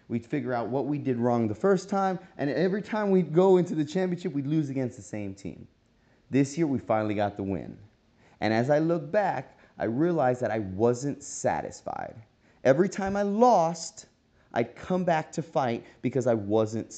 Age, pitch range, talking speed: 30-49, 115-160 Hz, 190 wpm